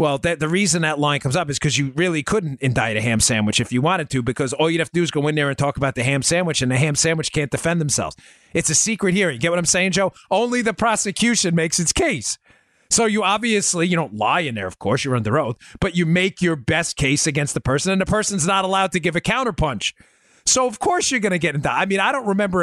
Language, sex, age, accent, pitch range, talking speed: English, male, 30-49, American, 115-170 Hz, 275 wpm